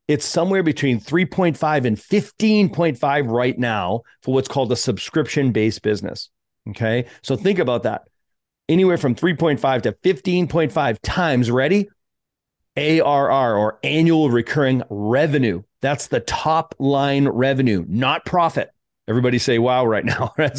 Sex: male